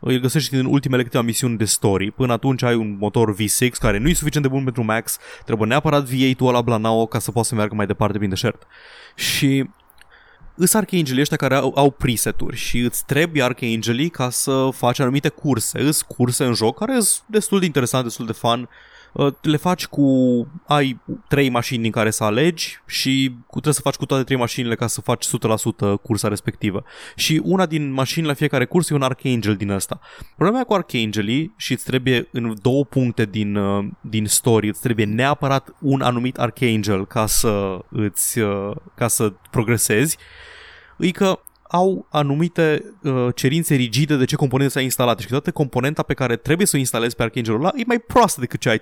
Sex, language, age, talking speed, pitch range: male, Romanian, 20-39, 190 wpm, 115-145 Hz